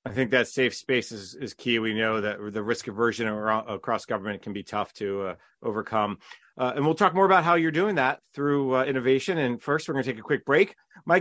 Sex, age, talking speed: male, 30-49, 245 wpm